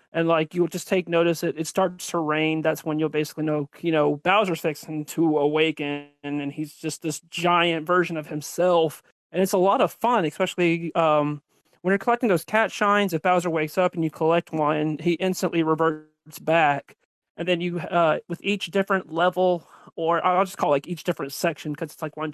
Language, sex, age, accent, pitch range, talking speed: English, male, 30-49, American, 155-180 Hz, 205 wpm